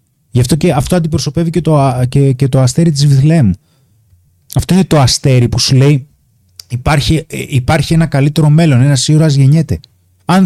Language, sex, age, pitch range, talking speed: Greek, male, 30-49, 115-150 Hz, 165 wpm